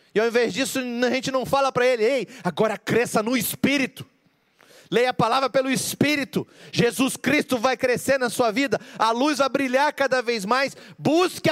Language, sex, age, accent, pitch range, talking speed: Portuguese, male, 40-59, Brazilian, 225-275 Hz, 180 wpm